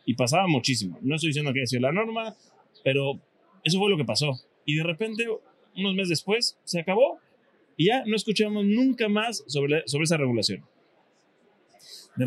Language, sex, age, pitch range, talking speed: Spanish, male, 20-39, 130-175 Hz, 180 wpm